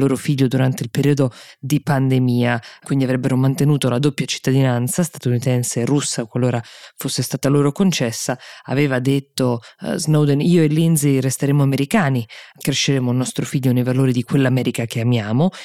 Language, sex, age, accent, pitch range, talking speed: Italian, female, 20-39, native, 125-155 Hz, 155 wpm